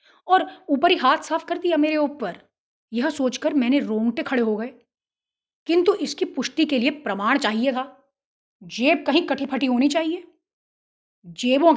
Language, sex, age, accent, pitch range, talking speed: Hindi, female, 20-39, native, 255-325 Hz, 160 wpm